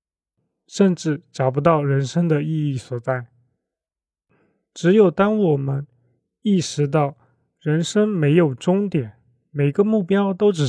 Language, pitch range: Chinese, 135-175 Hz